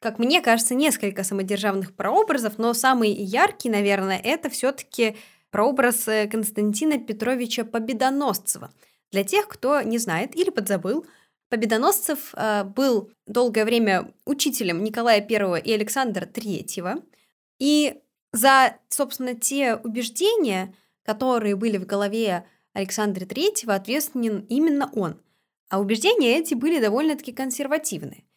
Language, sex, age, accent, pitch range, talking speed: Russian, female, 20-39, native, 210-265 Hz, 110 wpm